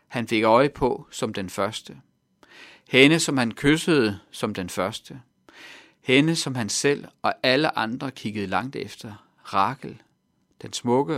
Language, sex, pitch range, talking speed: Danish, male, 110-140 Hz, 145 wpm